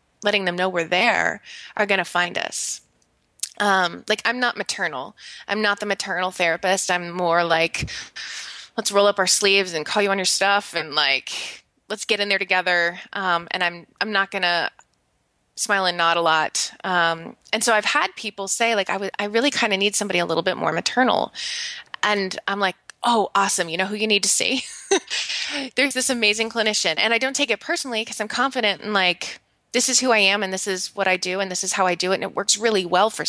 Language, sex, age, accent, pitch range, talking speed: English, female, 20-39, American, 190-230 Hz, 225 wpm